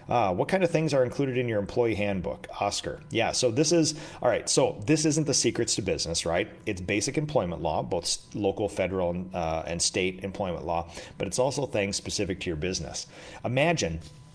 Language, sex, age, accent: English, male, 30-49, American